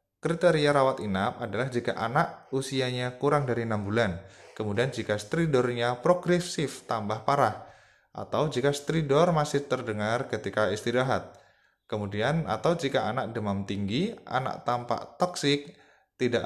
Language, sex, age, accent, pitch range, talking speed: Indonesian, male, 20-39, native, 105-140 Hz, 125 wpm